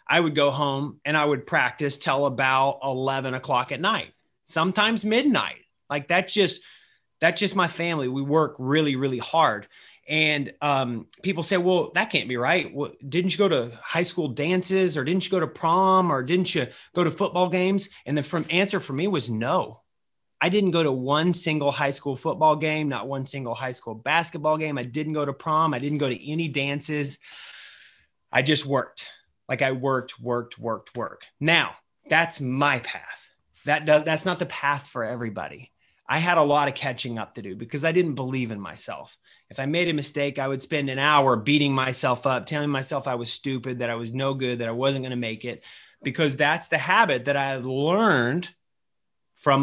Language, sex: English, male